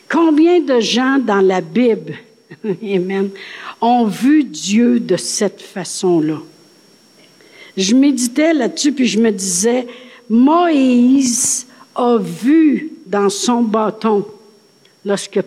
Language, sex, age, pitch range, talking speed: French, female, 60-79, 190-240 Hz, 105 wpm